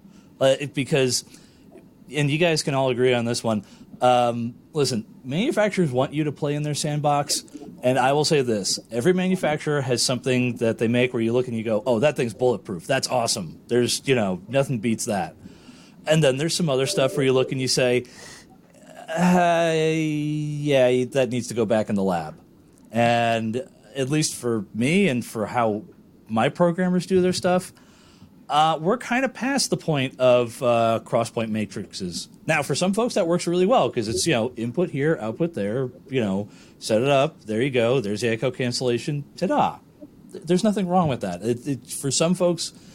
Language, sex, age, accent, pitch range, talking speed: English, male, 40-59, American, 120-160 Hz, 190 wpm